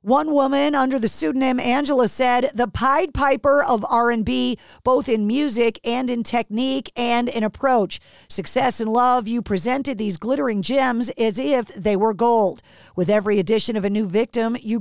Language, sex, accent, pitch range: English, female, American, 220-275 Hz